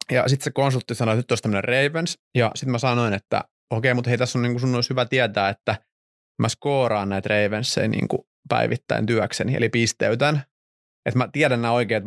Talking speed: 195 wpm